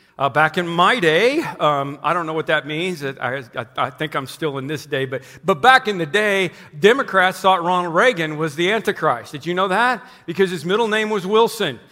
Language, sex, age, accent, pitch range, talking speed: English, male, 50-69, American, 175-245 Hz, 220 wpm